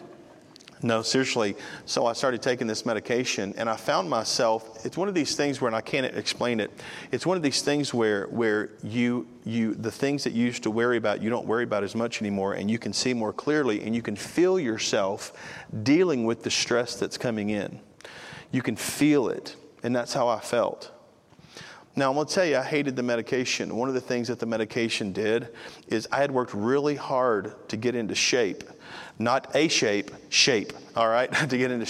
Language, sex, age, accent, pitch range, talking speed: English, male, 40-59, American, 105-130 Hz, 205 wpm